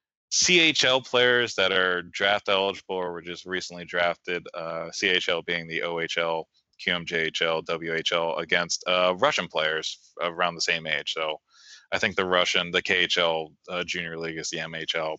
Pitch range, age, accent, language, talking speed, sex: 85-100 Hz, 20-39, American, English, 155 wpm, male